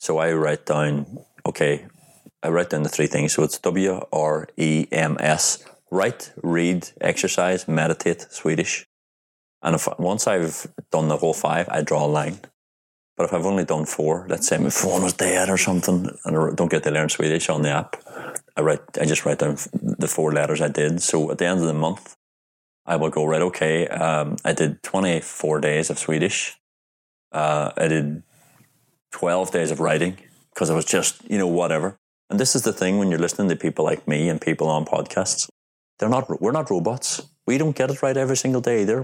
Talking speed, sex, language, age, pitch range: 205 wpm, male, English, 30-49, 75-90 Hz